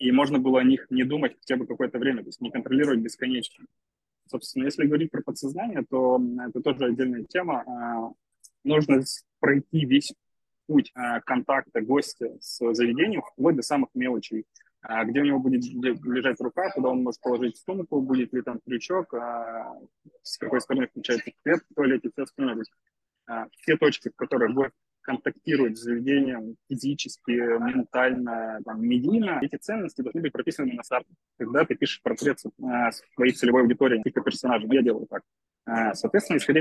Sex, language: male, Russian